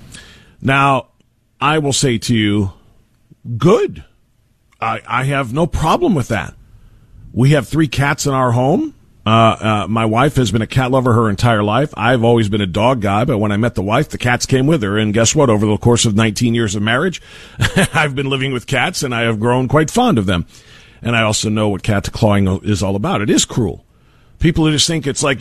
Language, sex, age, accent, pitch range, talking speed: English, male, 40-59, American, 105-130 Hz, 215 wpm